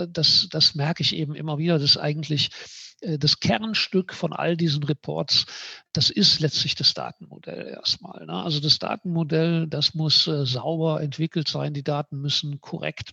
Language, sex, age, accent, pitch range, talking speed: German, male, 60-79, German, 145-165 Hz, 150 wpm